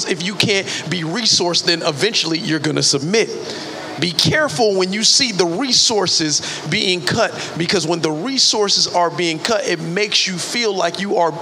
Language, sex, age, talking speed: English, male, 40-59, 175 wpm